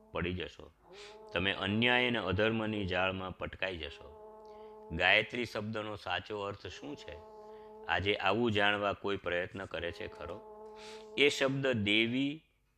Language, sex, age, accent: Gujarati, male, 50-69, native